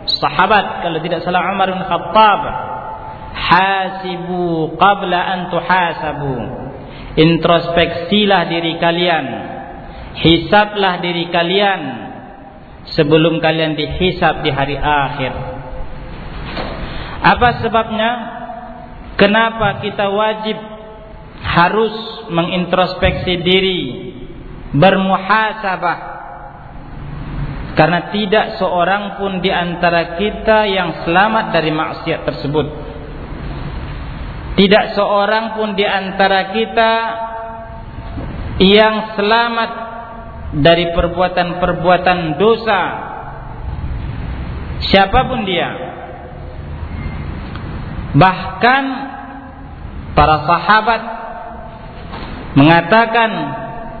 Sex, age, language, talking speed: male, 40-59, Indonesian, 65 wpm